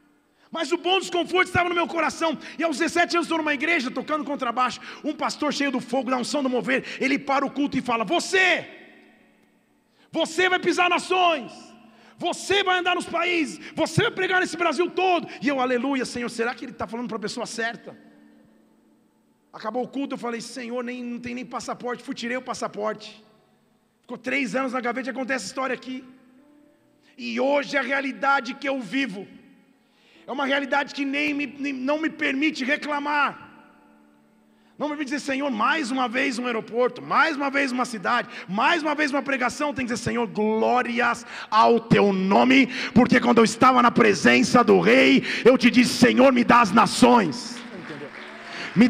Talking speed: 185 wpm